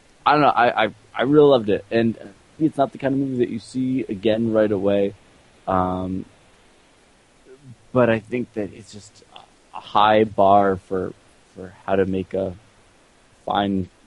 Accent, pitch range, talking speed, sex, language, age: American, 95-115 Hz, 165 wpm, male, English, 20-39